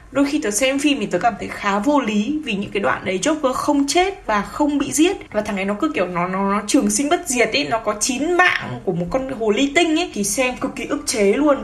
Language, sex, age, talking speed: Vietnamese, female, 10-29, 290 wpm